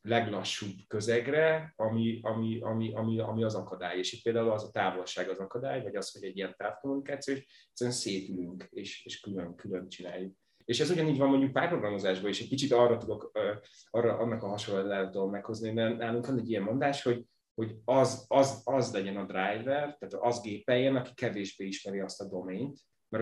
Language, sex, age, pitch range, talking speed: Hungarian, male, 30-49, 95-120 Hz, 180 wpm